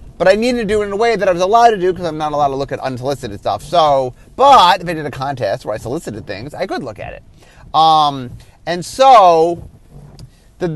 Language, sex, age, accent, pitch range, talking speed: English, male, 30-49, American, 145-205 Hz, 245 wpm